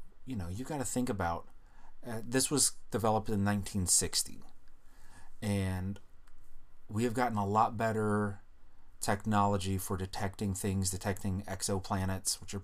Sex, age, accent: male, 30-49, American